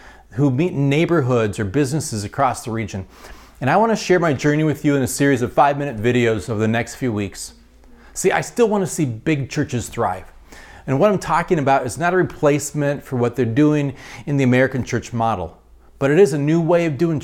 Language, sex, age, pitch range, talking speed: English, male, 40-59, 115-155 Hz, 225 wpm